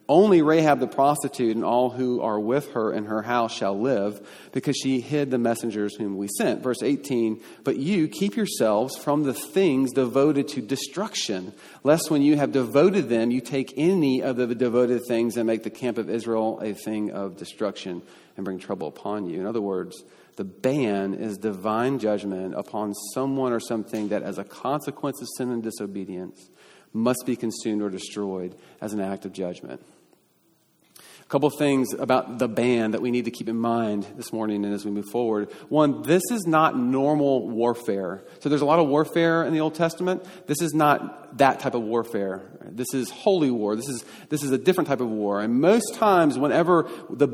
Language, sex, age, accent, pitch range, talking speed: English, male, 40-59, American, 110-140 Hz, 195 wpm